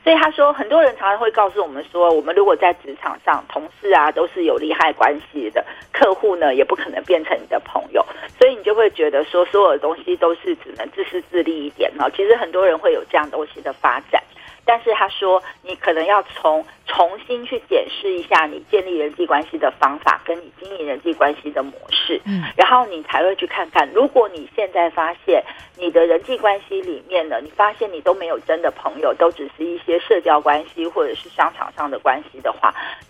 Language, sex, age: Chinese, female, 40-59